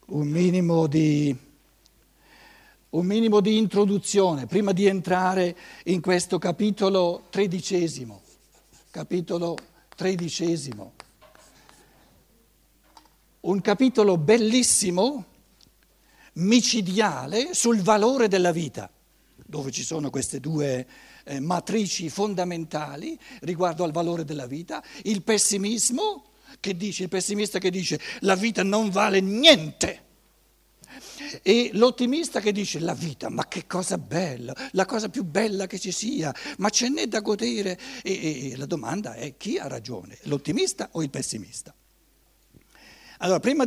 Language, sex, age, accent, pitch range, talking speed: Italian, male, 60-79, native, 160-210 Hz, 120 wpm